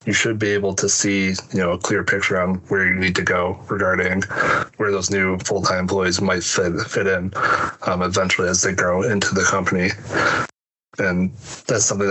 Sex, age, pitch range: male, 20-39, 95-100 Hz